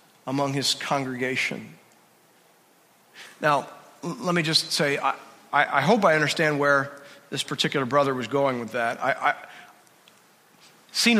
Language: English